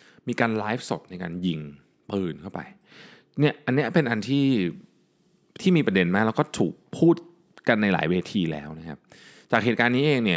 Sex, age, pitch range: male, 20-39, 85-130 Hz